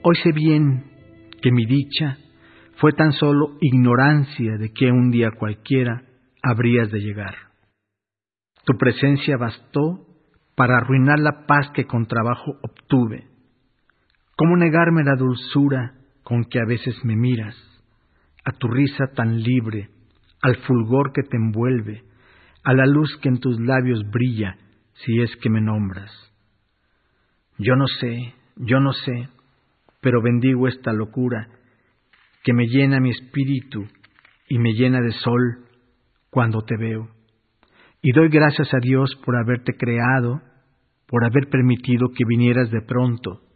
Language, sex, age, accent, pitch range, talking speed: Spanish, male, 50-69, Mexican, 110-130 Hz, 140 wpm